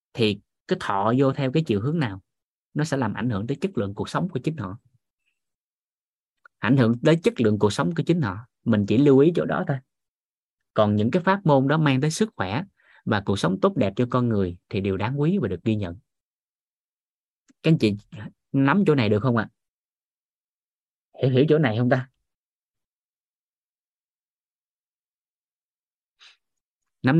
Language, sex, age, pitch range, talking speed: Vietnamese, male, 30-49, 110-160 Hz, 180 wpm